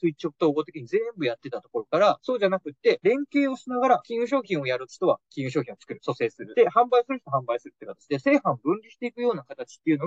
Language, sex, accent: Japanese, male, native